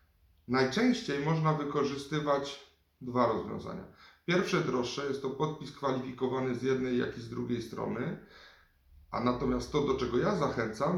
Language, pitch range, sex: Polish, 120-150 Hz, male